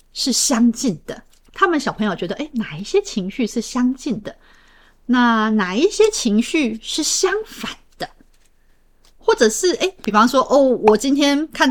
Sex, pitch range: female, 200-275 Hz